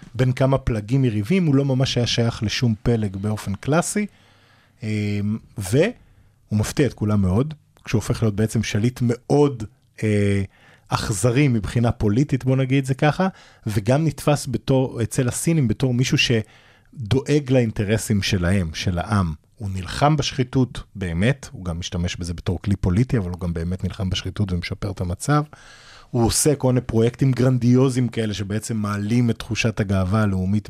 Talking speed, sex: 150 wpm, male